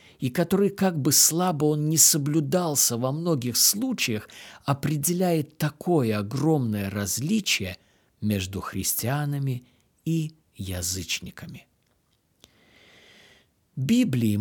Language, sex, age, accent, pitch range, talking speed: Russian, male, 50-69, native, 105-150 Hz, 85 wpm